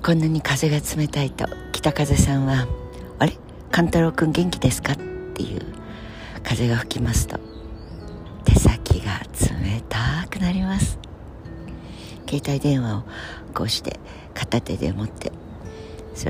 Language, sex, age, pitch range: Japanese, female, 60-79, 90-135 Hz